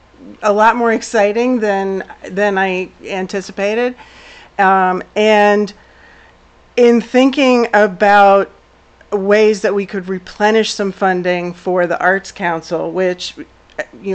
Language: English